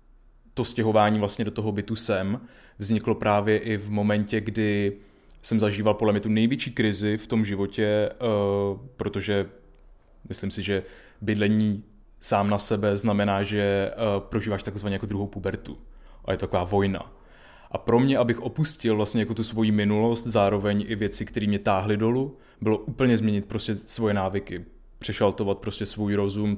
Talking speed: 155 wpm